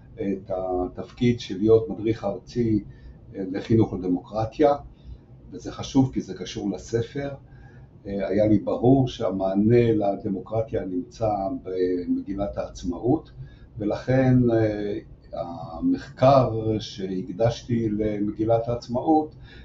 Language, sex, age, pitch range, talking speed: Hebrew, male, 60-79, 100-130 Hz, 80 wpm